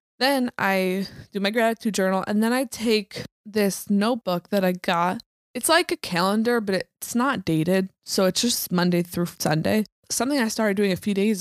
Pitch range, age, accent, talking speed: 175-215 Hz, 20-39, American, 190 wpm